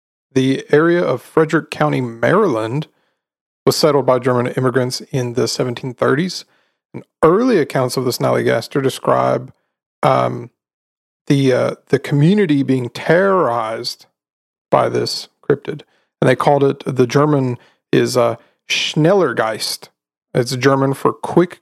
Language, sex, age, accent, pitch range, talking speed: English, male, 40-59, American, 125-150 Hz, 125 wpm